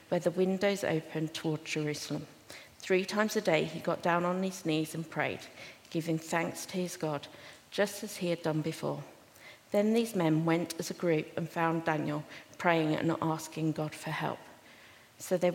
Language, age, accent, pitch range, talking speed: English, 50-69, British, 160-190 Hz, 180 wpm